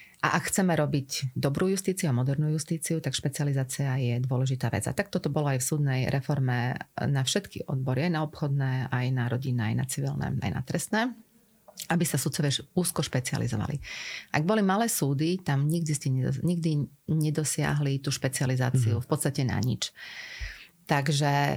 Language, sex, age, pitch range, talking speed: Slovak, female, 40-59, 135-165 Hz, 160 wpm